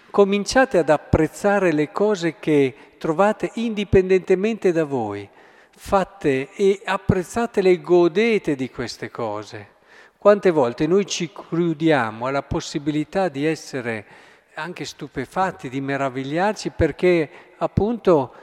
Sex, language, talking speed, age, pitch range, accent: male, Italian, 105 wpm, 50-69, 135-185 Hz, native